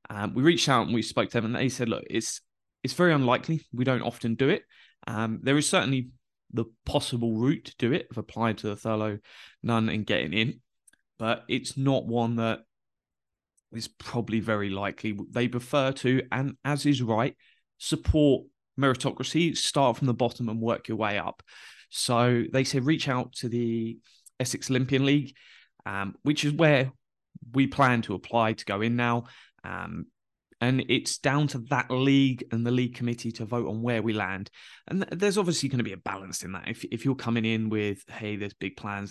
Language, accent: English, British